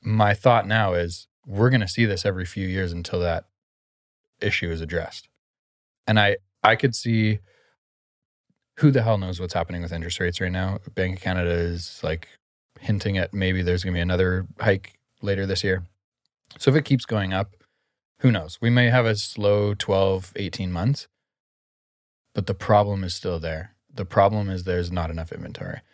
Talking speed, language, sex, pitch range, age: 185 wpm, English, male, 85-105 Hz, 20-39